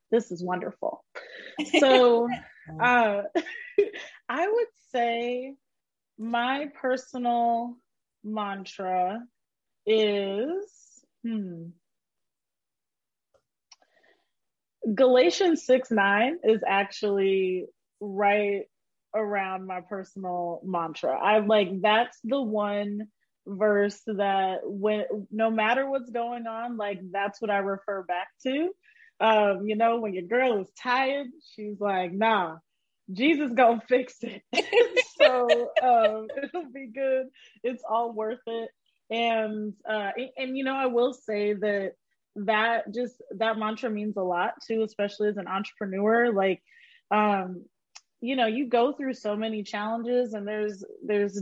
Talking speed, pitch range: 120 wpm, 205-255 Hz